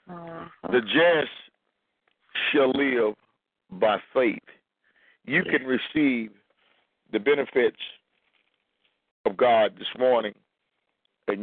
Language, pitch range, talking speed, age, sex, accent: English, 115-140 Hz, 85 wpm, 50-69, male, American